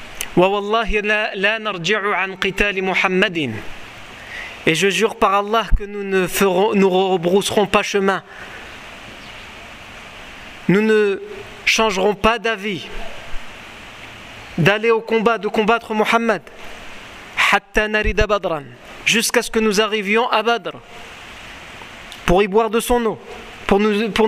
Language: French